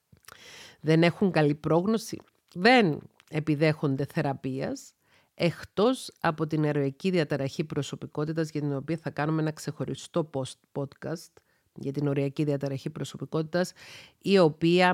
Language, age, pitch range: Greek, 40-59, 145-165 Hz